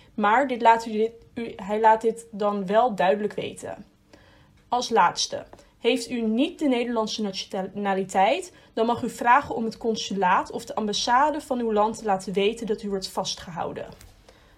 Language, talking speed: Dutch, 150 wpm